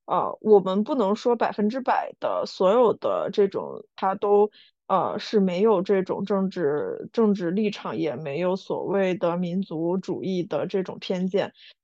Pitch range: 185-225 Hz